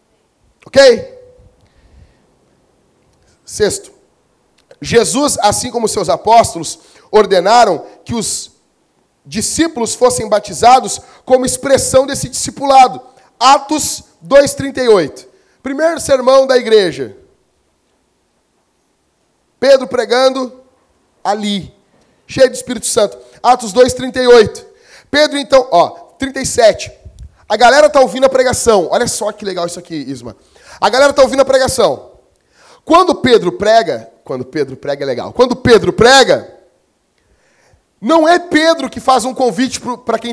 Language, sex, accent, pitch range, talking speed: Portuguese, male, Brazilian, 230-290 Hz, 110 wpm